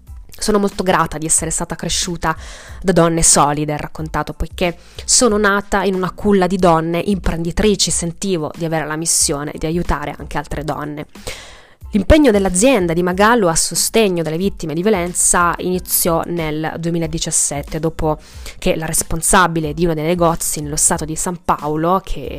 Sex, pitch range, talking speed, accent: female, 155-185 Hz, 155 wpm, native